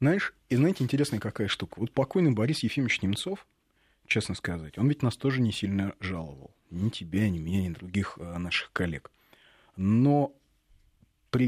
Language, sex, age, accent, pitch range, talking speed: Russian, male, 30-49, native, 105-150 Hz, 155 wpm